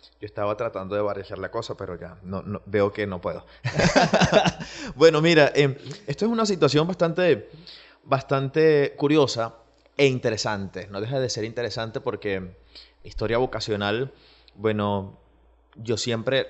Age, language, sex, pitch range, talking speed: 20-39, Spanish, male, 105-135 Hz, 140 wpm